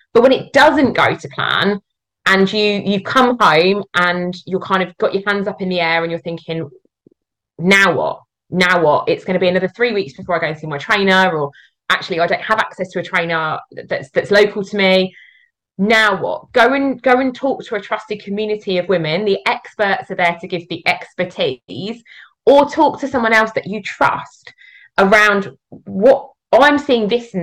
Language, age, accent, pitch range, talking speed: English, 20-39, British, 180-240 Hz, 205 wpm